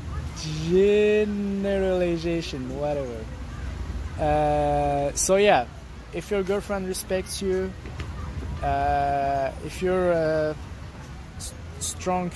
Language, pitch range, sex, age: English, 120-165 Hz, male, 20-39